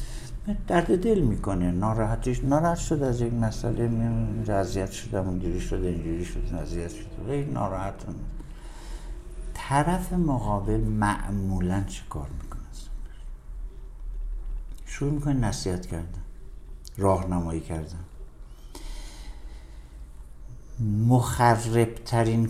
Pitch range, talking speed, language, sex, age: 80-115 Hz, 95 wpm, Persian, male, 60-79